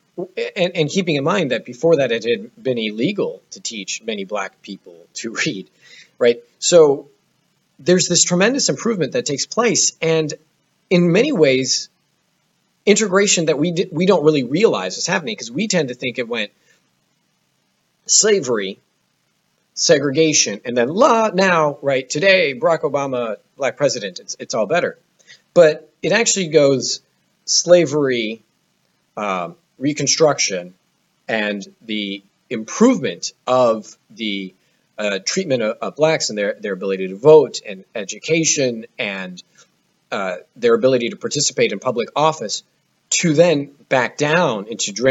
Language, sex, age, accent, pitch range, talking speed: English, male, 40-59, American, 120-180 Hz, 135 wpm